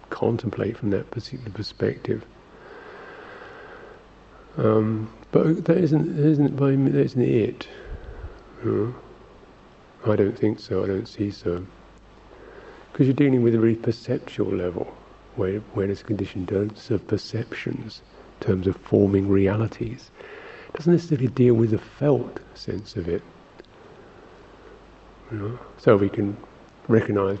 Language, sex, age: English, male, 50-69